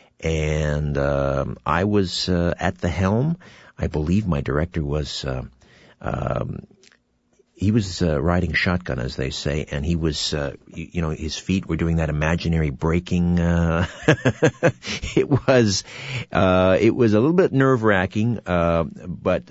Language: English